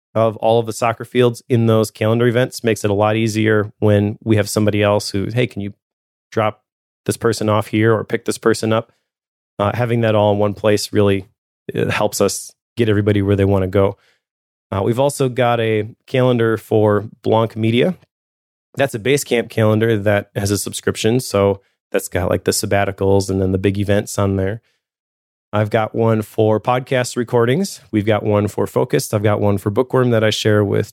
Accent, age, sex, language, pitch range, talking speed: American, 30-49, male, English, 105-120 Hz, 200 wpm